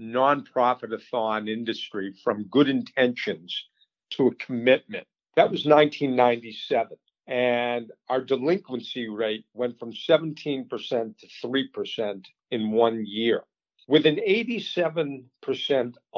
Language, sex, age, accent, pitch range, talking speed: English, male, 50-69, American, 115-145 Hz, 95 wpm